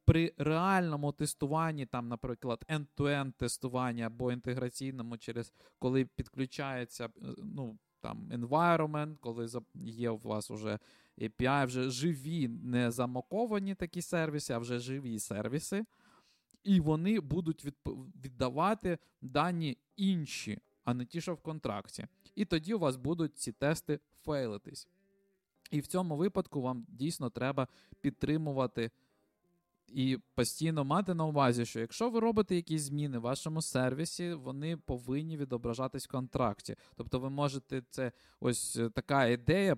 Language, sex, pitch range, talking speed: Ukrainian, male, 120-160 Hz, 130 wpm